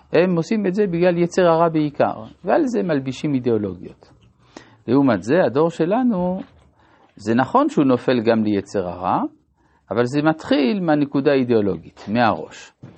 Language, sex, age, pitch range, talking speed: Hebrew, male, 50-69, 115-185 Hz, 135 wpm